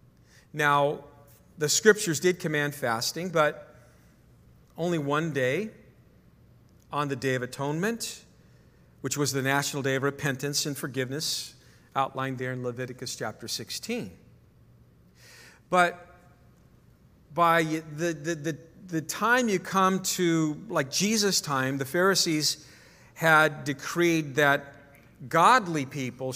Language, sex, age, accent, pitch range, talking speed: English, male, 50-69, American, 130-160 Hz, 115 wpm